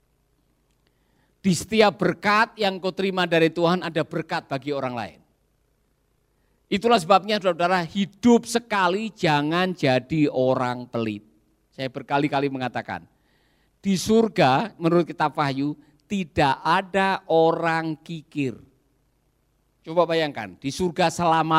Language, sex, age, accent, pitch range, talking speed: Indonesian, male, 50-69, native, 145-220 Hz, 110 wpm